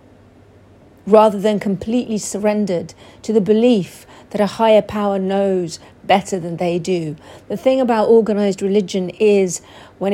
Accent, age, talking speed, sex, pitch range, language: British, 40-59, 135 wpm, female, 180-220 Hz, English